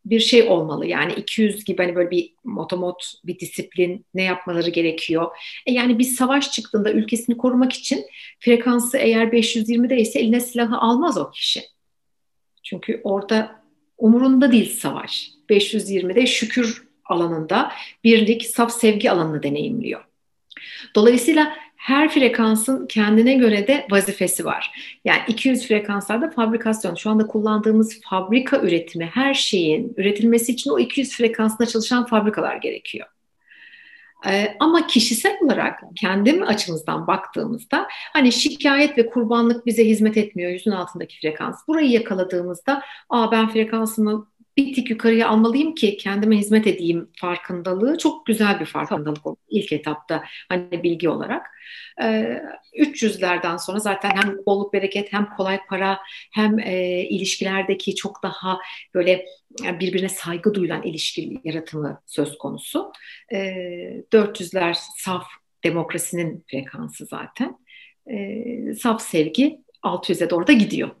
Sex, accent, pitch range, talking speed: female, native, 185-245 Hz, 125 wpm